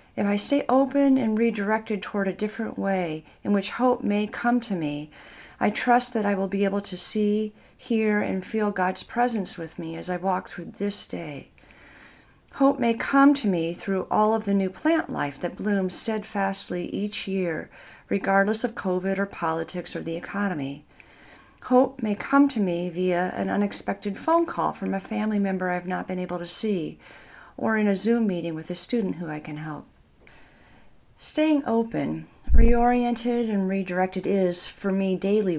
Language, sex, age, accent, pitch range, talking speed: English, female, 50-69, American, 175-220 Hz, 180 wpm